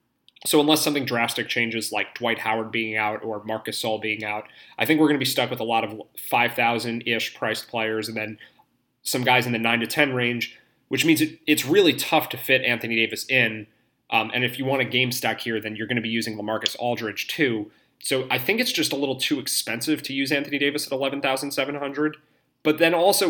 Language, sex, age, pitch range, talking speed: English, male, 30-49, 110-140 Hz, 225 wpm